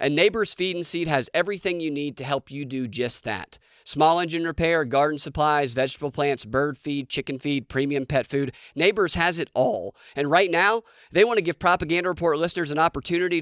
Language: English